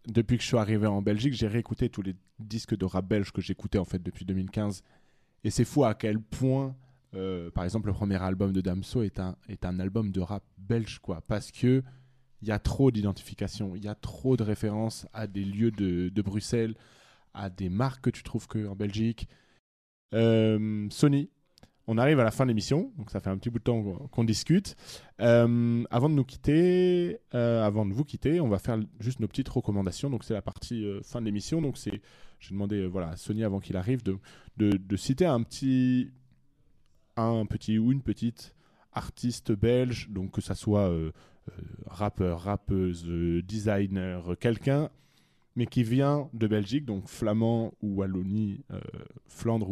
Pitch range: 100-120 Hz